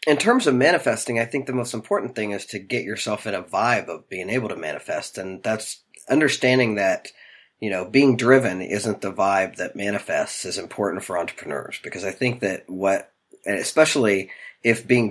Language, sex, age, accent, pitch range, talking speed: English, male, 40-59, American, 95-120 Hz, 185 wpm